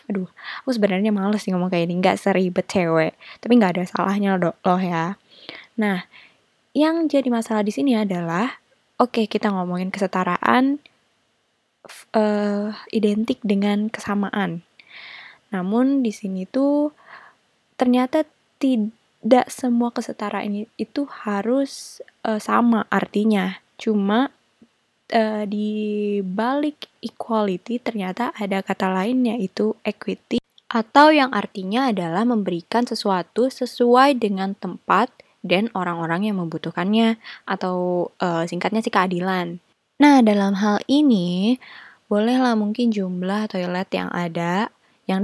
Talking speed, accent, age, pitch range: 115 wpm, native, 20-39, 185-235 Hz